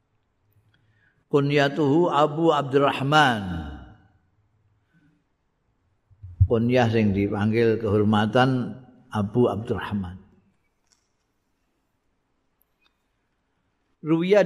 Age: 50-69